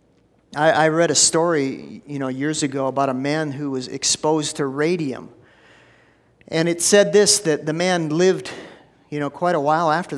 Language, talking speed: English, 175 wpm